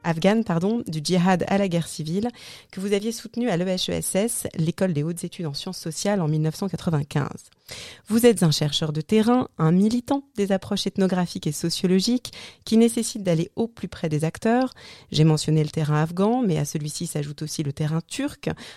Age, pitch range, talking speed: 30-49, 155-200 Hz, 180 wpm